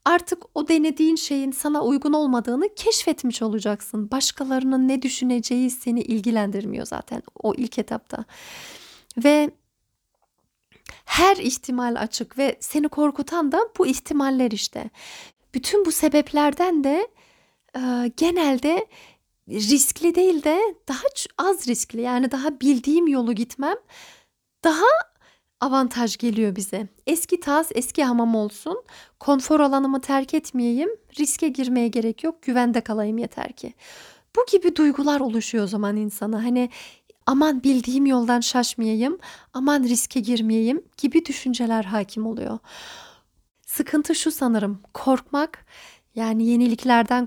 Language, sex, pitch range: Turkish, female, 235-305 Hz